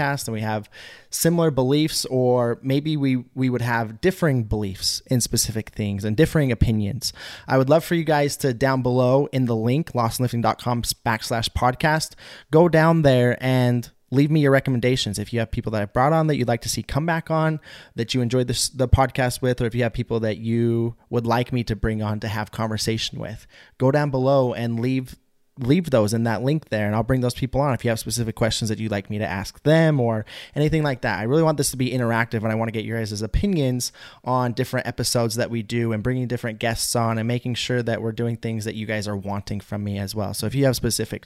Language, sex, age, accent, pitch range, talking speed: English, male, 20-39, American, 110-130 Hz, 235 wpm